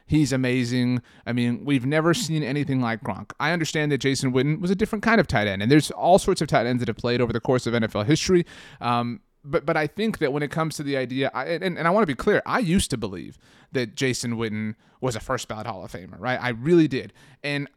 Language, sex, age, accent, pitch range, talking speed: English, male, 30-49, American, 115-150 Hz, 260 wpm